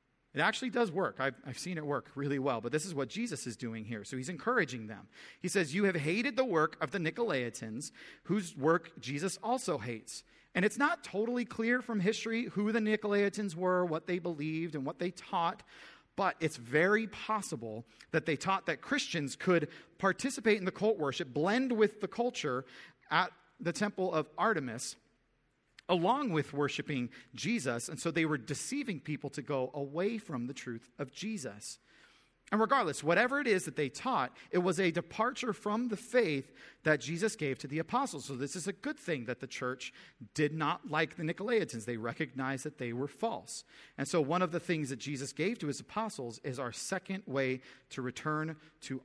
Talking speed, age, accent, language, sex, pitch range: 195 wpm, 40-59, American, English, male, 135-200 Hz